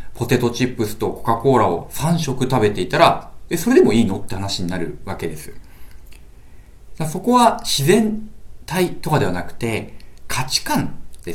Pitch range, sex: 105-155 Hz, male